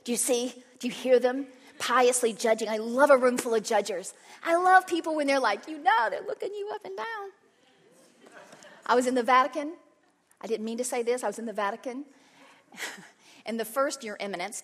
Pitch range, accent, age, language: 230-330 Hz, American, 40-59, English